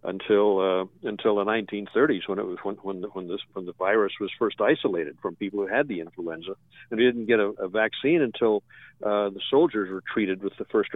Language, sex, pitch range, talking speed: English, male, 100-125 Hz, 225 wpm